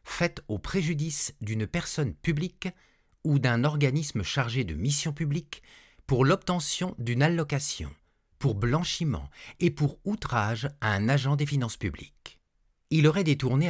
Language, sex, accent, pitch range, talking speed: French, male, French, 105-155 Hz, 135 wpm